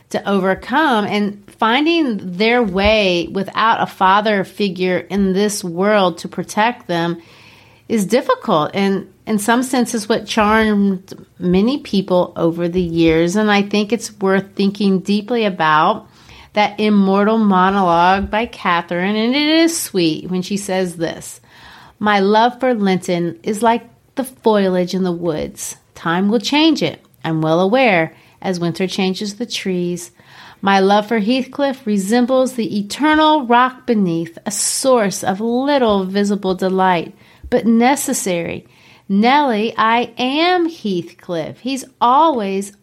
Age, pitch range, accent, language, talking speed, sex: 30-49, 185-240 Hz, American, English, 135 wpm, female